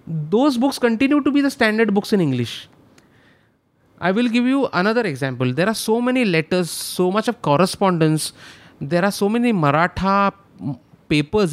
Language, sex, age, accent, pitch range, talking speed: Hindi, male, 30-49, native, 145-205 Hz, 160 wpm